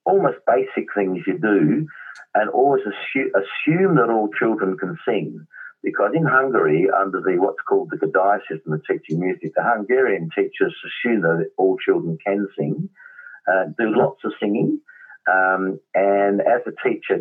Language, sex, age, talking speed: English, male, 50-69, 160 wpm